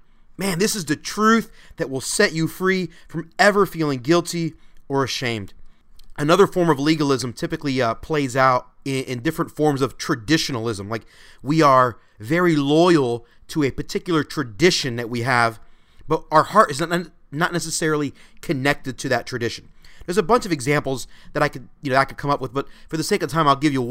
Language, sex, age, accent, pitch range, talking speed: English, male, 30-49, American, 135-180 Hz, 195 wpm